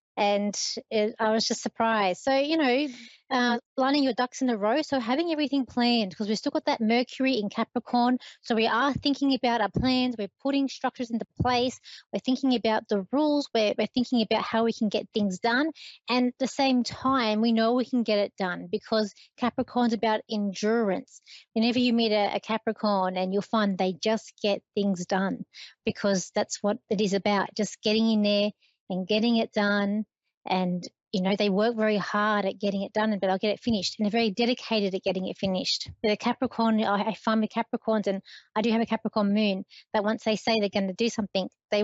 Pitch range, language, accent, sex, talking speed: 205-245 Hz, English, Australian, female, 210 wpm